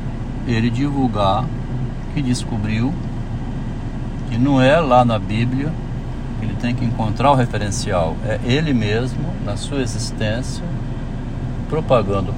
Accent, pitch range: Brazilian, 115-130 Hz